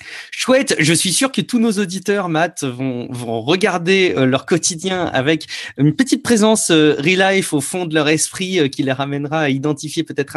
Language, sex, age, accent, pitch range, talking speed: French, male, 30-49, French, 140-200 Hz, 195 wpm